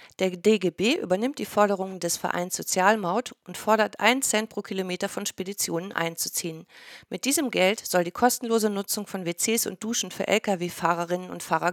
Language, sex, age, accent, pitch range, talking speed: German, female, 50-69, German, 175-220 Hz, 165 wpm